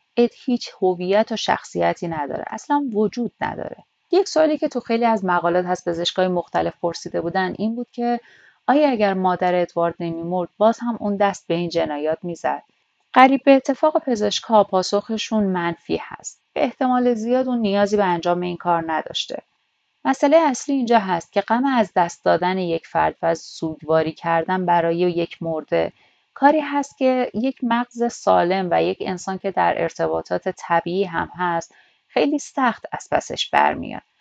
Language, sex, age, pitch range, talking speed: Persian, female, 30-49, 175-235 Hz, 160 wpm